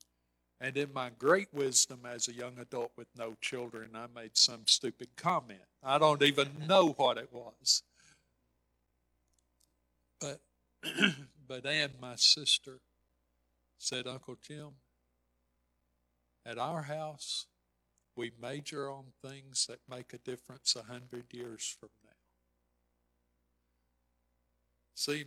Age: 50-69